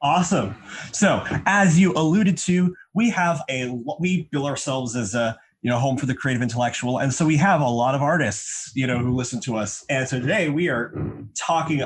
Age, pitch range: 30-49, 120-160 Hz